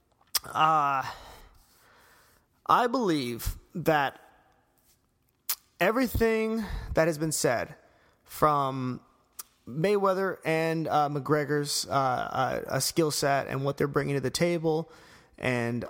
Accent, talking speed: American, 100 wpm